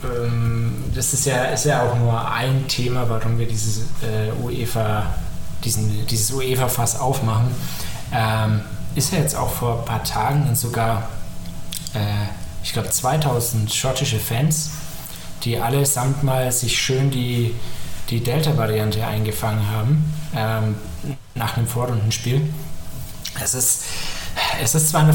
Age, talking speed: 20-39, 135 wpm